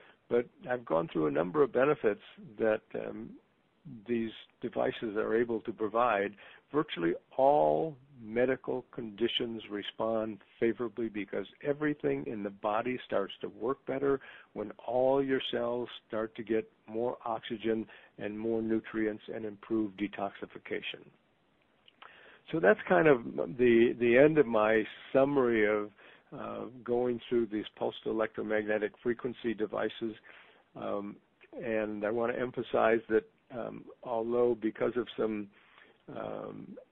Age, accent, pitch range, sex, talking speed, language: 50-69, American, 110-120 Hz, male, 125 wpm, English